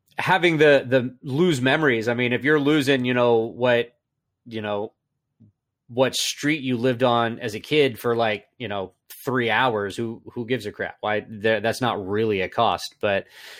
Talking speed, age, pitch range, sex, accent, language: 180 wpm, 30-49, 120-165 Hz, male, American, English